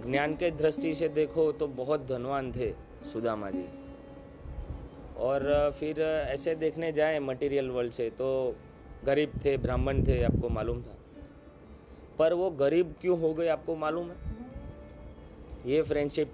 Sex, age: male, 30-49